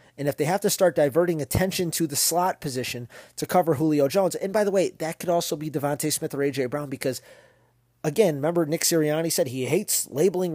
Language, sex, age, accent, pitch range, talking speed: English, male, 30-49, American, 120-155 Hz, 215 wpm